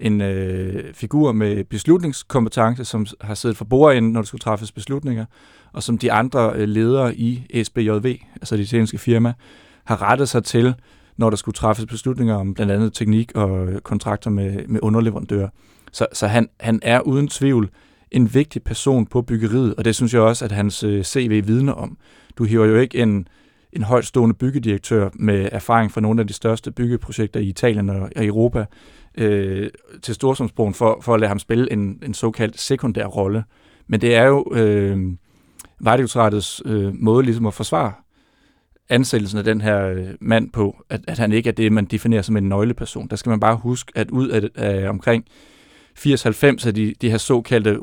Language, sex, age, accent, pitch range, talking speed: Danish, male, 30-49, native, 105-120 Hz, 180 wpm